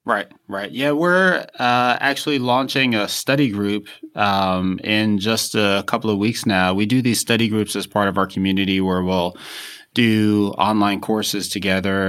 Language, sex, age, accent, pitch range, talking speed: English, male, 30-49, American, 90-110 Hz, 170 wpm